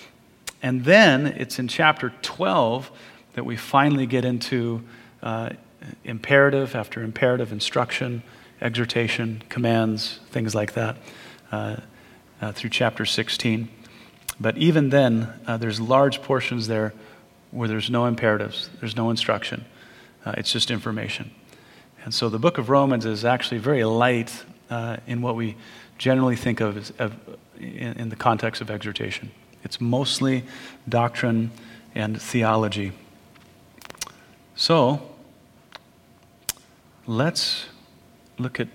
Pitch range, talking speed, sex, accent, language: 110-130 Hz, 120 wpm, male, American, English